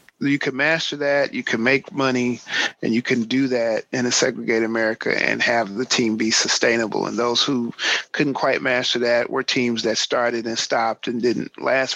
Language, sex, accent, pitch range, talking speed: English, male, American, 115-140 Hz, 195 wpm